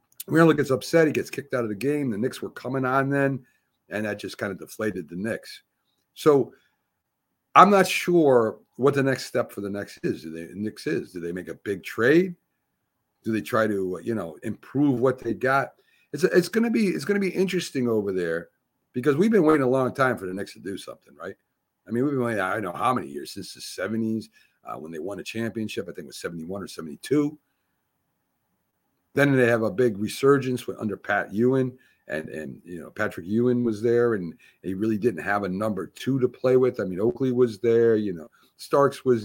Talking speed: 220 wpm